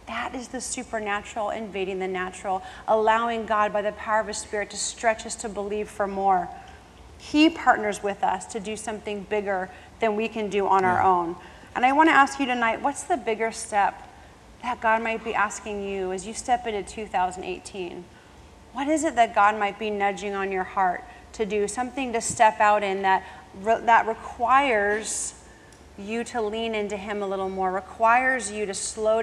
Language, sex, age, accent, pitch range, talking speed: English, female, 30-49, American, 200-230 Hz, 185 wpm